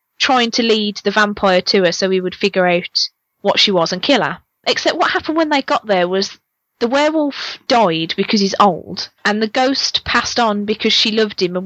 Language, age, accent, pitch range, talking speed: English, 20-39, British, 185-235 Hz, 215 wpm